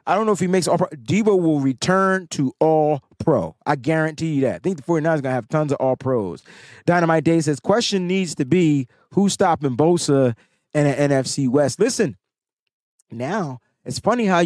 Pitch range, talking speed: 120-175 Hz, 200 wpm